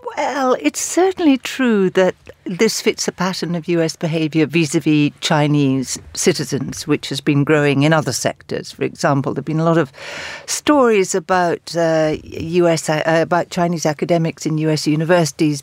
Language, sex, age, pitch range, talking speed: English, female, 60-79, 145-180 Hz, 150 wpm